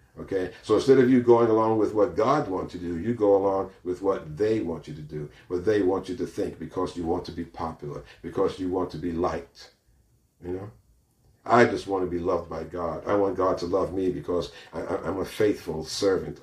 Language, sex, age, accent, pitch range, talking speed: English, male, 50-69, American, 90-105 Hz, 235 wpm